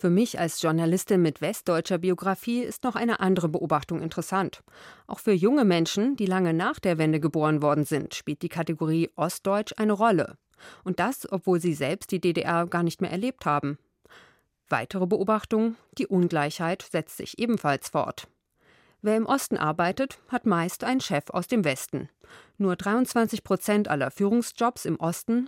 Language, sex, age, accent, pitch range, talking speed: German, female, 40-59, German, 165-215 Hz, 160 wpm